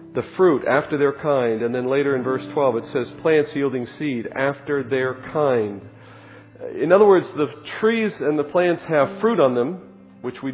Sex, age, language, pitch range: male, 40-59, English, 130-190 Hz